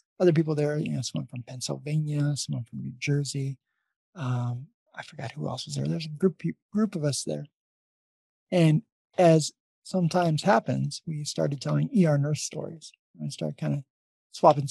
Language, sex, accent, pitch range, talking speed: English, male, American, 140-175 Hz, 165 wpm